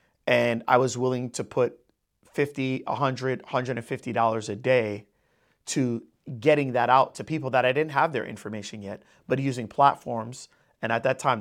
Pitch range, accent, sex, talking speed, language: 115-140 Hz, American, male, 165 wpm, English